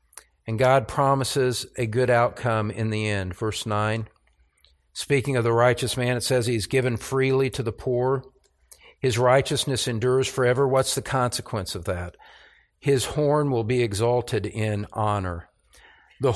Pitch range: 120-170 Hz